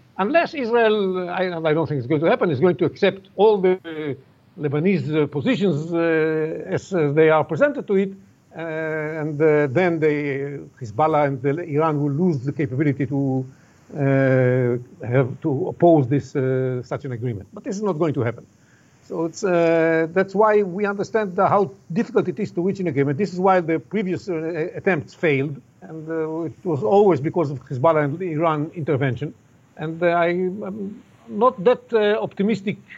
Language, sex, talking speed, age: English, male, 175 wpm, 50-69